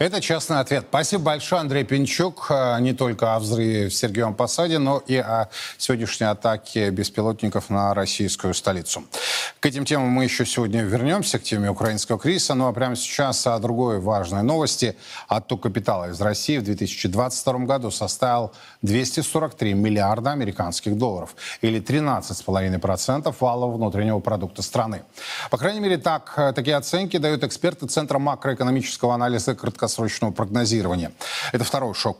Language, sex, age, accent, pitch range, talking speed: Russian, male, 20-39, native, 110-135 Hz, 140 wpm